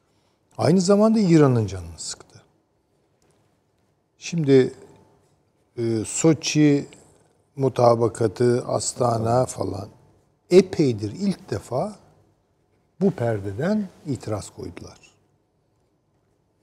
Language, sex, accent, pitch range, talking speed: Turkish, male, native, 110-165 Hz, 65 wpm